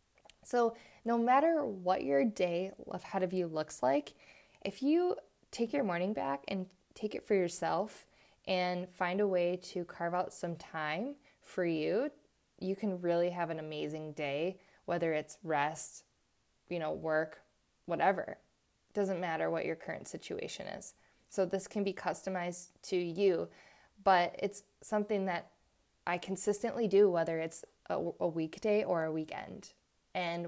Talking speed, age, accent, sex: 155 wpm, 20-39, American, female